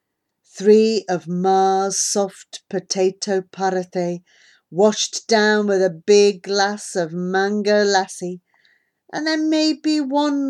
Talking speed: 110 wpm